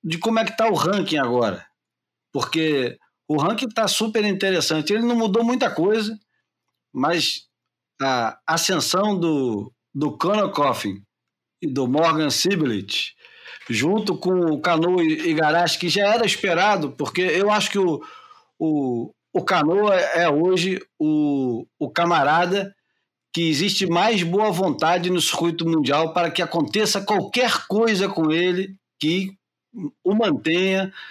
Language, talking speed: Portuguese, 130 wpm